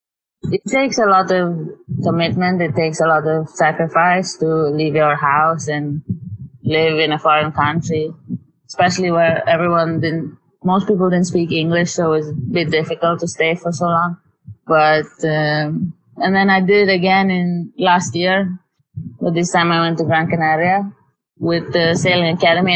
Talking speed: 170 wpm